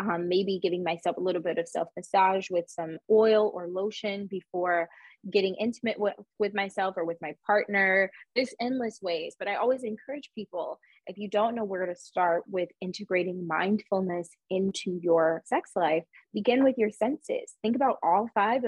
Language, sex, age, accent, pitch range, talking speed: English, female, 20-39, American, 180-220 Hz, 175 wpm